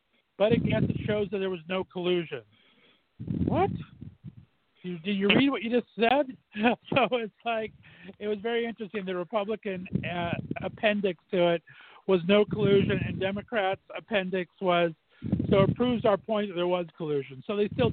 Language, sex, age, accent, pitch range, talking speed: English, male, 50-69, American, 170-205 Hz, 165 wpm